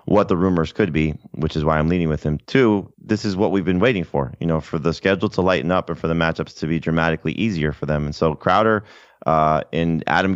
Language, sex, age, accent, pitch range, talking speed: English, male, 30-49, American, 80-90 Hz, 255 wpm